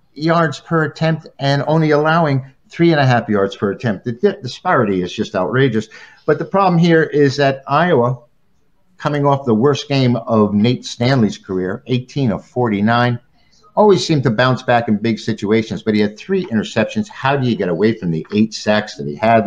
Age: 50-69